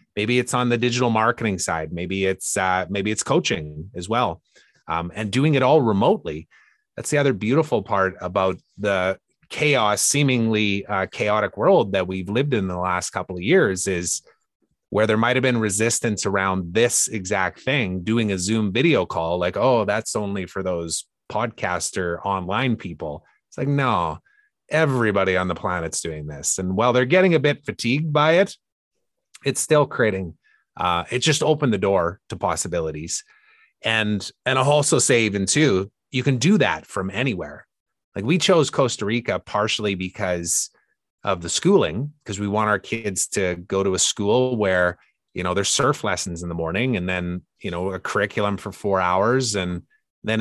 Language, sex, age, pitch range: English, male, 30-49, 90-120 Hz